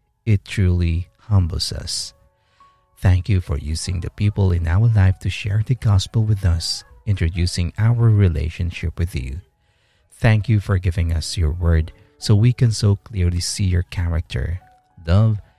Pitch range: 85-110 Hz